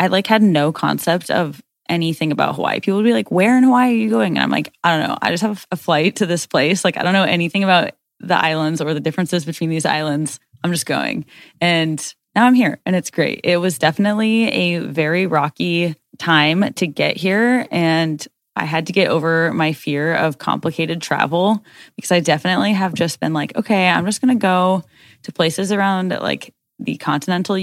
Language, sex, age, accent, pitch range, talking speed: English, female, 10-29, American, 155-195 Hz, 210 wpm